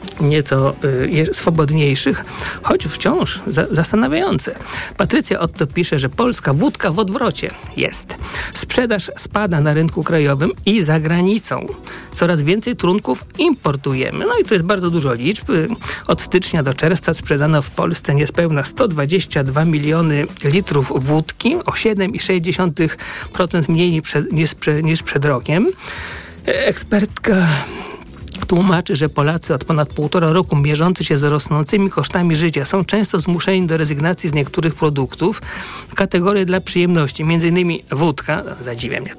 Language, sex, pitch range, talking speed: Polish, male, 150-190 Hz, 130 wpm